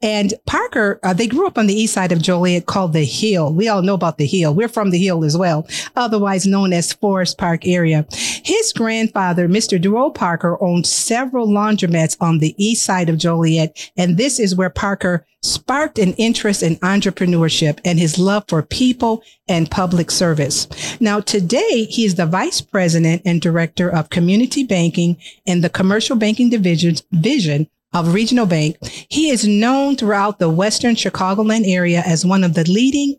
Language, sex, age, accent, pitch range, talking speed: English, female, 50-69, American, 170-220 Hz, 180 wpm